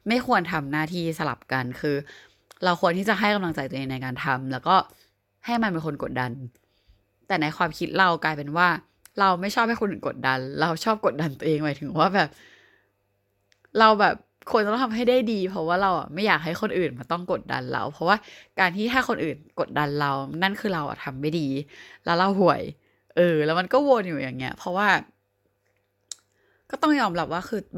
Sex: female